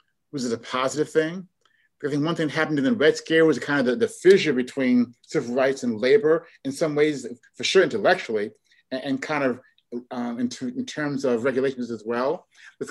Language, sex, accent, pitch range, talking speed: English, male, American, 130-185 Hz, 220 wpm